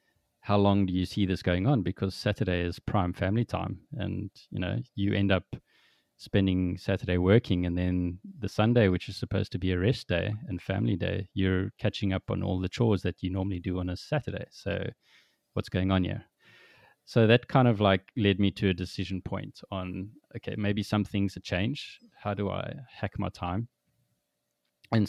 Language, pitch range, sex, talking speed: English, 95-110 Hz, male, 195 wpm